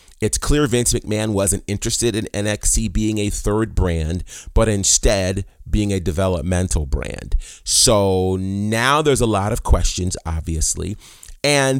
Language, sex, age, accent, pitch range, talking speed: English, male, 30-49, American, 90-115 Hz, 135 wpm